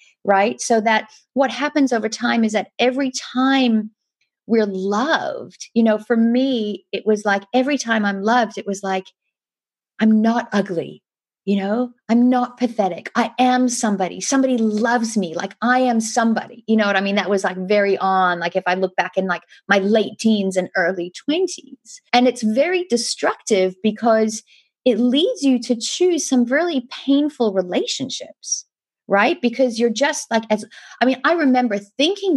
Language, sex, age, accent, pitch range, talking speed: English, female, 40-59, American, 200-255 Hz, 170 wpm